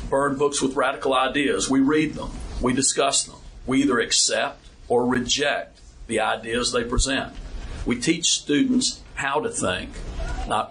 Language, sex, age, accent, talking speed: English, male, 50-69, American, 150 wpm